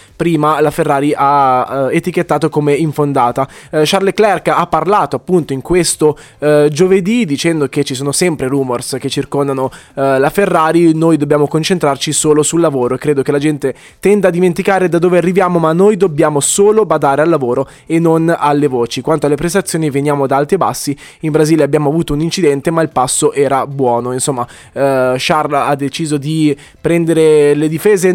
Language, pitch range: Italian, 135-165 Hz